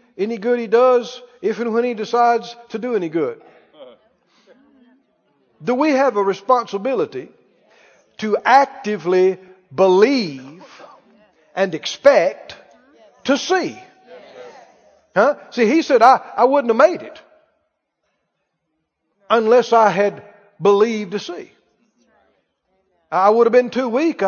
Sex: male